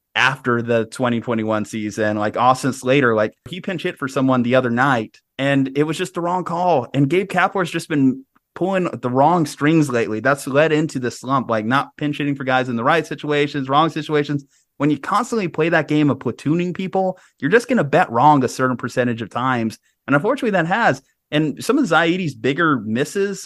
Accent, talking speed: American, 205 wpm